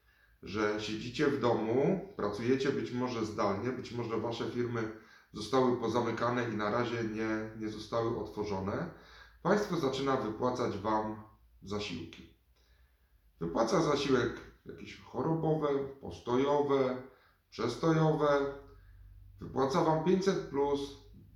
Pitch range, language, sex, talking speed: 110-140 Hz, Polish, male, 100 wpm